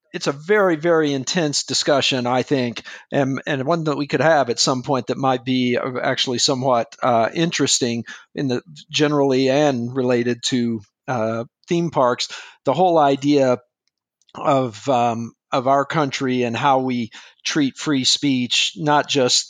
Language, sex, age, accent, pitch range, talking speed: English, male, 50-69, American, 125-150 Hz, 155 wpm